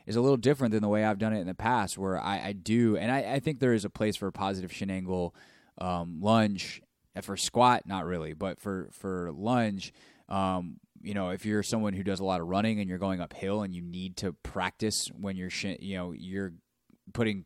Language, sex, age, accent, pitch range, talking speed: English, male, 20-39, American, 90-105 Hz, 230 wpm